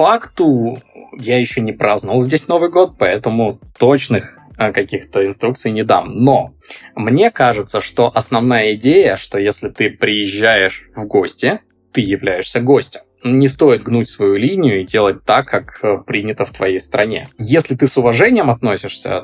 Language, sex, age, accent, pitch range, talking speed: Russian, male, 20-39, native, 100-130 Hz, 145 wpm